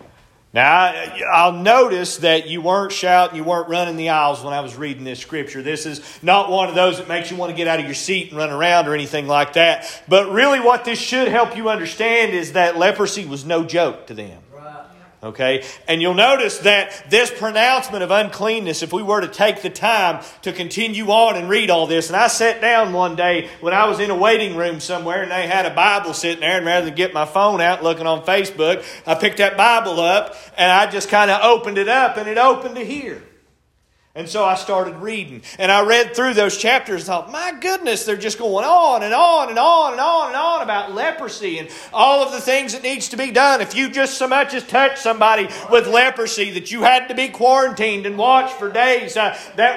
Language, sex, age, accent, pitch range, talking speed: English, male, 40-59, American, 180-255 Hz, 230 wpm